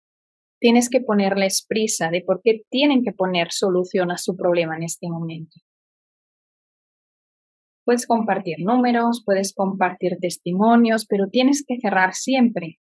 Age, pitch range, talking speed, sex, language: 20-39, 190-235 Hz, 130 wpm, female, Spanish